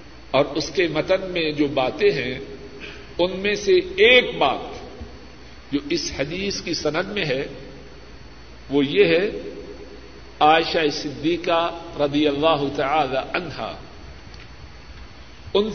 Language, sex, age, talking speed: Urdu, male, 60-79, 115 wpm